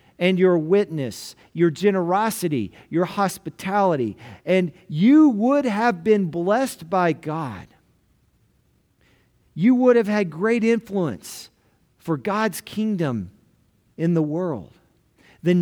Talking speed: 110 wpm